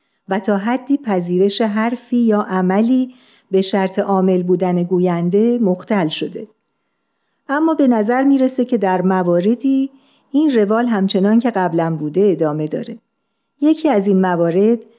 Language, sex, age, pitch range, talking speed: Persian, female, 50-69, 180-240 Hz, 130 wpm